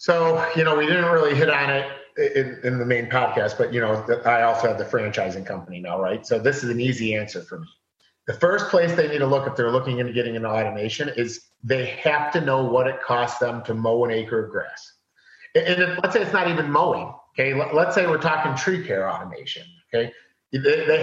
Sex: male